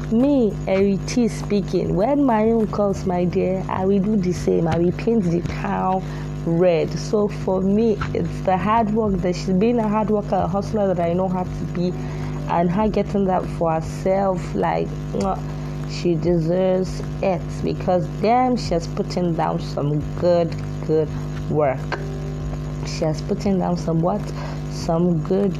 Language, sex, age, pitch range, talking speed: English, female, 20-39, 150-195 Hz, 160 wpm